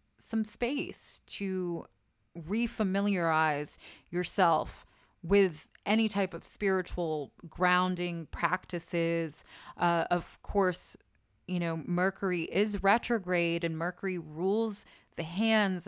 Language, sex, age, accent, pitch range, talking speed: English, female, 20-39, American, 165-195 Hz, 95 wpm